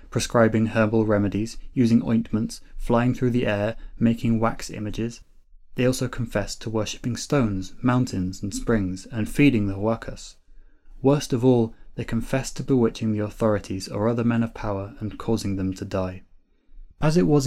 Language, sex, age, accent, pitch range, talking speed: English, male, 20-39, British, 105-125 Hz, 160 wpm